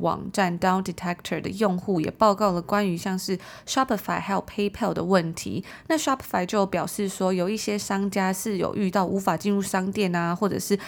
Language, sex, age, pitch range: Chinese, female, 20-39, 185-215 Hz